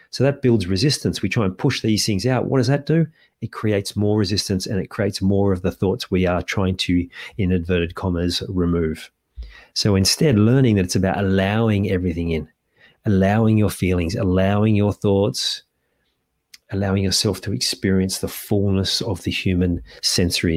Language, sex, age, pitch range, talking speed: English, male, 40-59, 90-105 Hz, 170 wpm